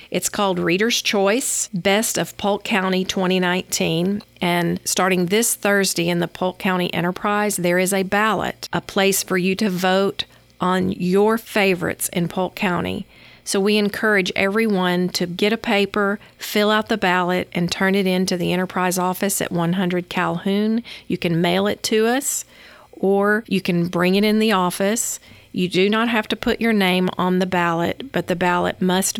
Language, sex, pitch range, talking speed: English, female, 175-205 Hz, 175 wpm